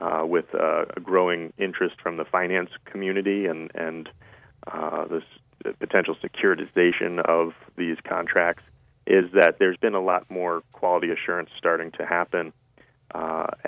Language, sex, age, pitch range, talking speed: English, male, 30-49, 85-120 Hz, 145 wpm